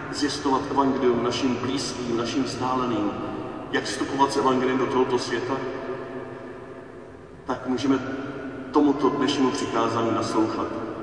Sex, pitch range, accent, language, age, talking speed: male, 120-160 Hz, native, Czech, 40-59, 100 wpm